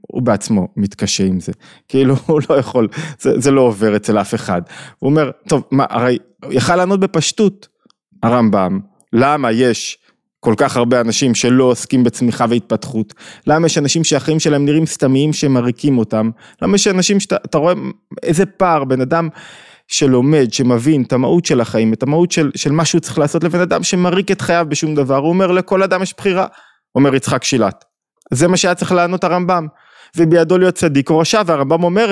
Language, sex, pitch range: Hebrew, male, 120-175 Hz